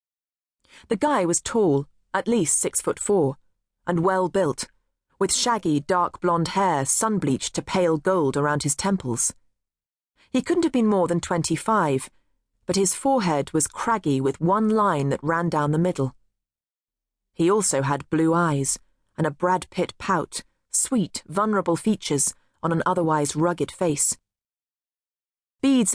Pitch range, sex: 140-190 Hz, female